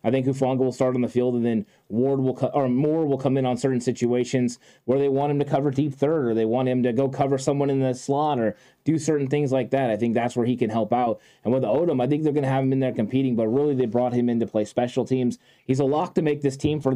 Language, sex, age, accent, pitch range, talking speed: English, male, 20-39, American, 120-140 Hz, 295 wpm